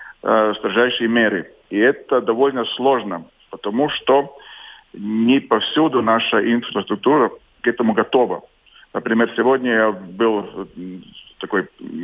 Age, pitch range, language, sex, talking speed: 40-59, 105-125 Hz, Russian, male, 100 wpm